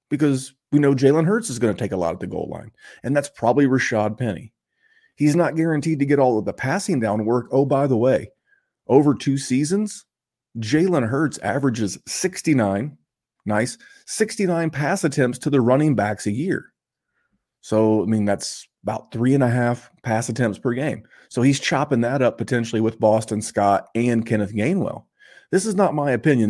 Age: 30-49